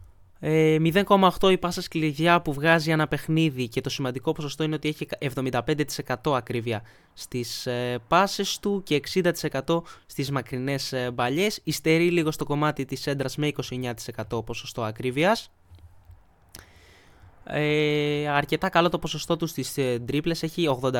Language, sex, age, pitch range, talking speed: Greek, male, 20-39, 115-155 Hz, 125 wpm